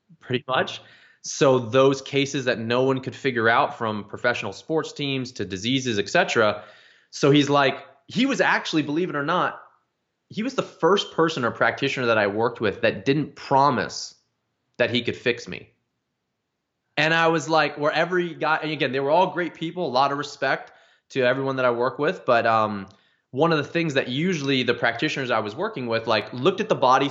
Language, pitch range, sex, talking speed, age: English, 115-145 Hz, male, 200 wpm, 20-39